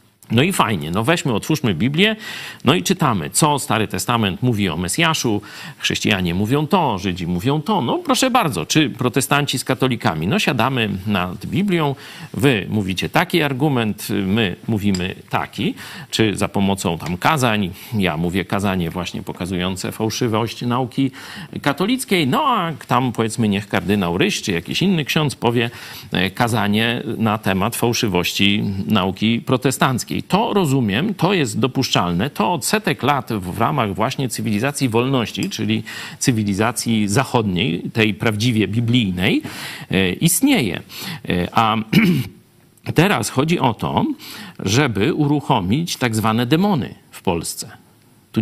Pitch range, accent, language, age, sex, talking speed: 105-150 Hz, native, Polish, 40-59, male, 130 wpm